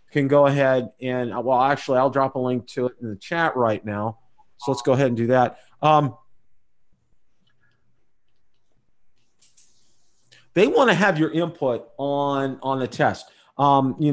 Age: 40-59